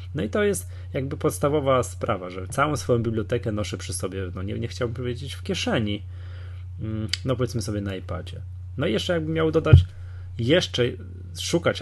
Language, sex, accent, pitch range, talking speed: Polish, male, native, 90-125 Hz, 175 wpm